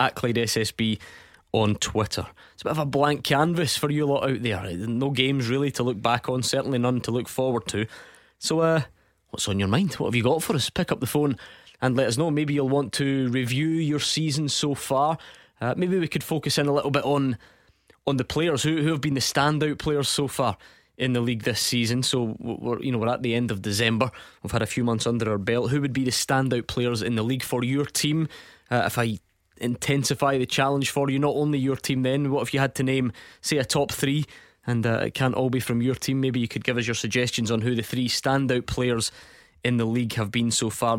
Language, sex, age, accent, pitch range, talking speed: English, male, 20-39, British, 115-145 Hz, 245 wpm